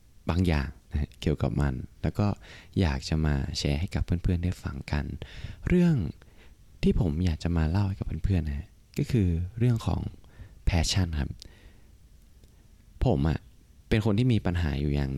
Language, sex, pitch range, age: Thai, male, 80-105 Hz, 20-39